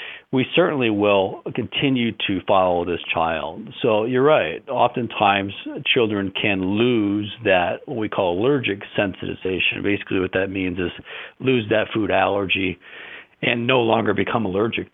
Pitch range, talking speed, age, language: 95-110 Hz, 140 wpm, 50-69, English